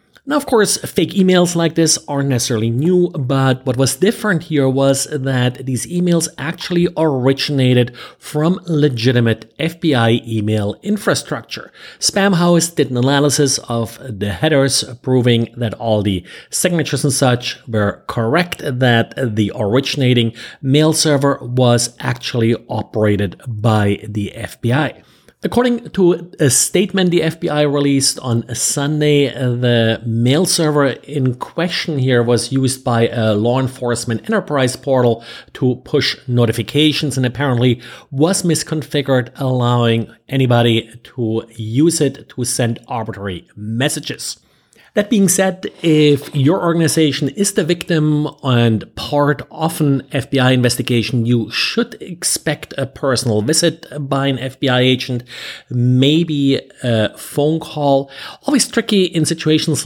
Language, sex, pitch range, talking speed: English, male, 120-155 Hz, 125 wpm